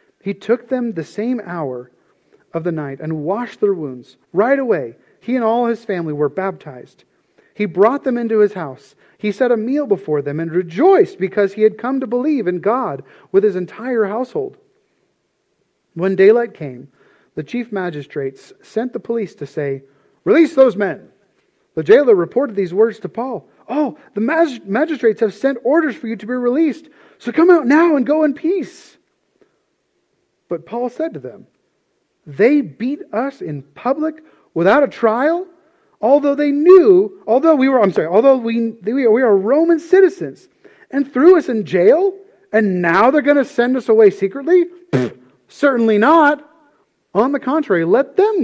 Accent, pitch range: American, 195-320 Hz